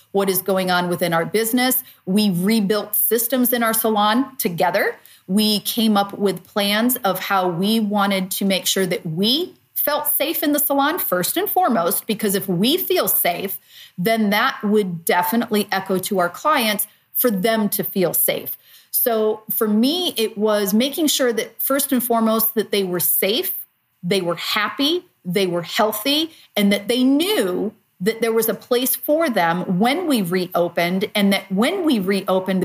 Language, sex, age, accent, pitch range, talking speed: English, female, 40-59, American, 190-235 Hz, 175 wpm